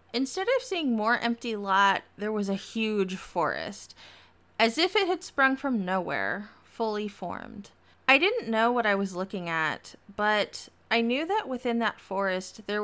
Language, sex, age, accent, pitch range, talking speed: English, female, 20-39, American, 190-250 Hz, 170 wpm